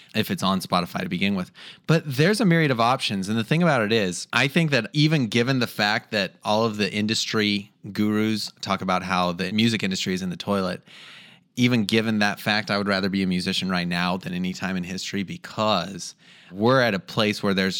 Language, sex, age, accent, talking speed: English, male, 20-39, American, 225 wpm